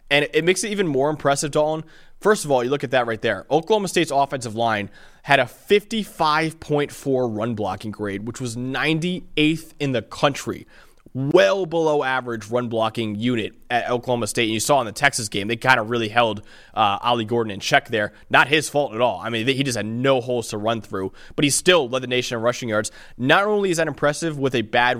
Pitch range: 115-145 Hz